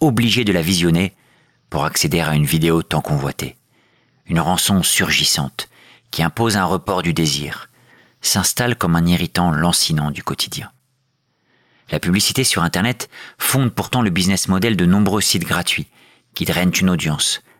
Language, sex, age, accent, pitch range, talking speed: French, male, 50-69, French, 80-105 Hz, 150 wpm